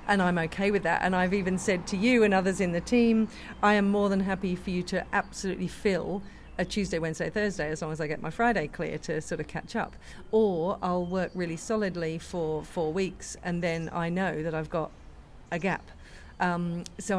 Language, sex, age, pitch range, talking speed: English, female, 40-59, 160-195 Hz, 215 wpm